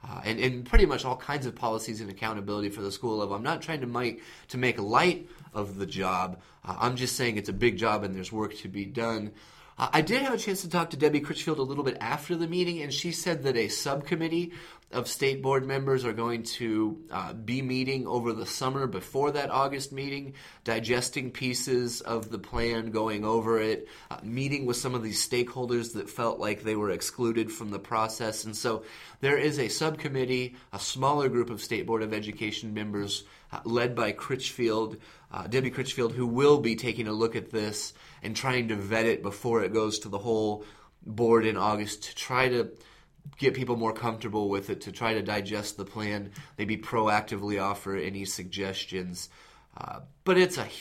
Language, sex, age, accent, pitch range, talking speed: English, male, 30-49, American, 110-135 Hz, 200 wpm